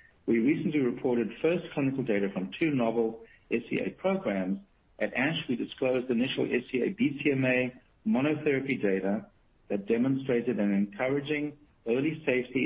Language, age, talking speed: English, 60-79, 120 wpm